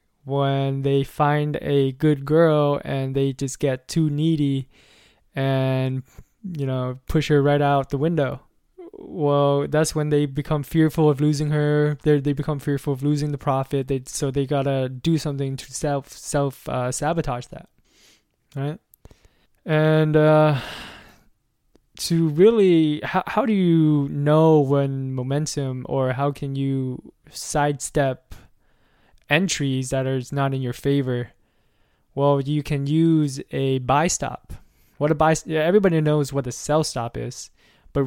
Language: English